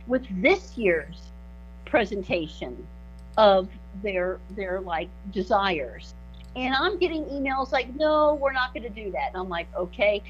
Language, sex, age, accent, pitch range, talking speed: English, female, 50-69, American, 200-290 Hz, 140 wpm